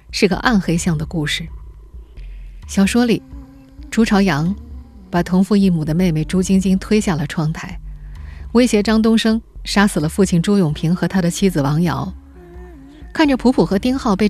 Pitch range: 160-205 Hz